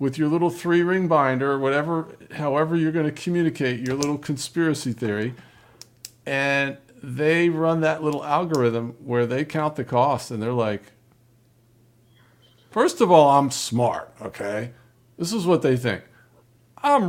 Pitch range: 120-170 Hz